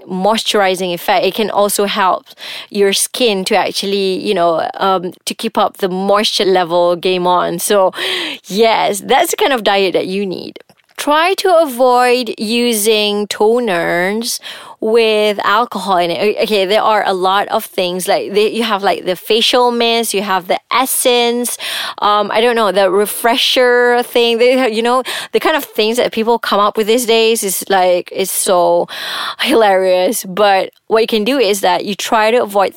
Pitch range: 185-230 Hz